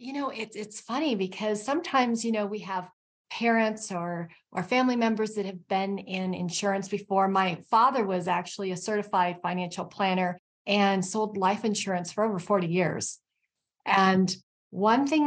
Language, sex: English, female